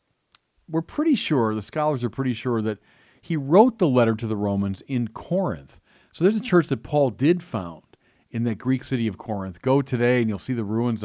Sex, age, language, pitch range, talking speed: male, 40-59, English, 105-140 Hz, 210 wpm